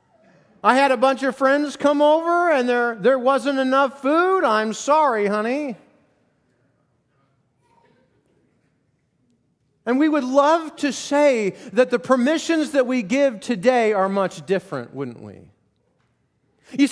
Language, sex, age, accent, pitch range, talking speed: English, male, 40-59, American, 190-285 Hz, 130 wpm